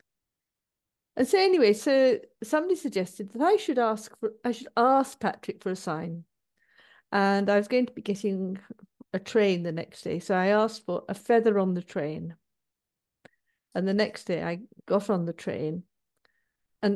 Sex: female